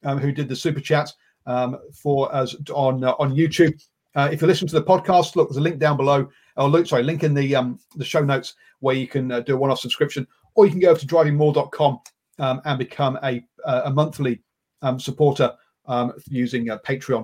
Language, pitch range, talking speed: English, 135-165 Hz, 220 wpm